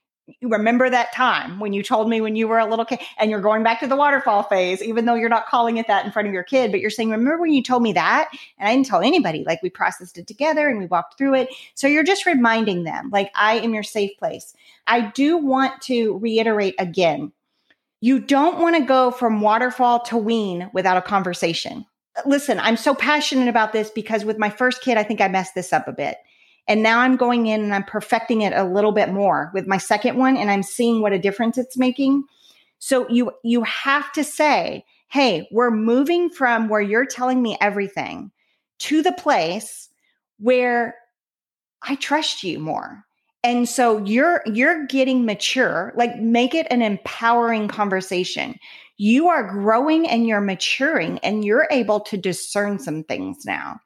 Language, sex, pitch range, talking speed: English, female, 210-260 Hz, 200 wpm